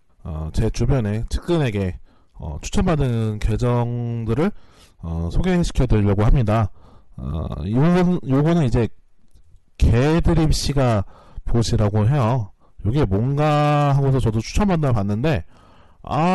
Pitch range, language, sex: 95-130 Hz, Korean, male